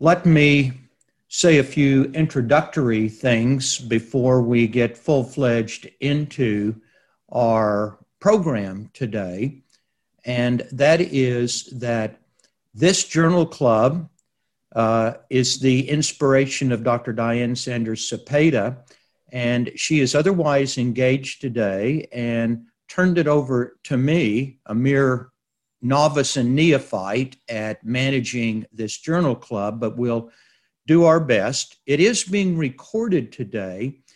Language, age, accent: English, 60-79, American